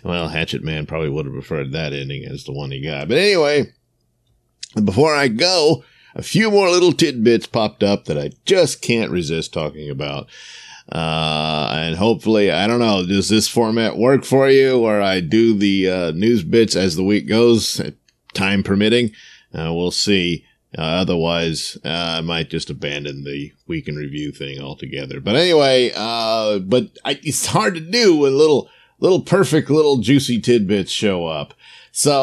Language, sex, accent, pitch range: English, male, American, 85-120 Hz